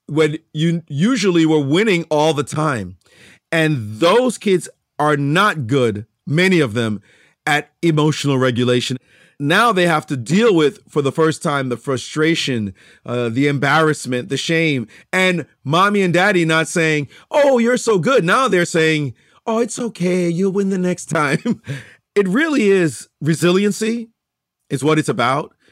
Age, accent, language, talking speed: 40-59, American, English, 155 wpm